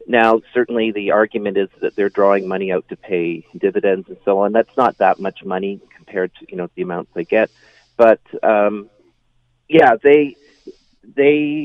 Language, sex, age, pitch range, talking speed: English, male, 40-59, 100-125 Hz, 175 wpm